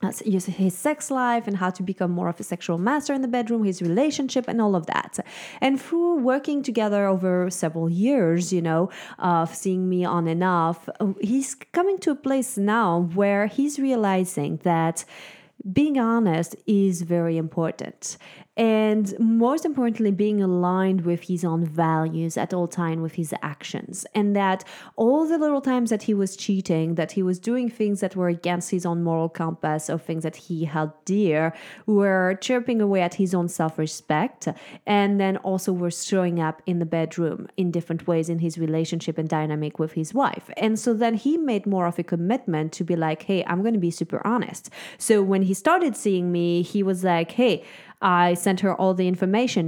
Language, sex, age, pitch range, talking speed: English, female, 30-49, 165-215 Hz, 190 wpm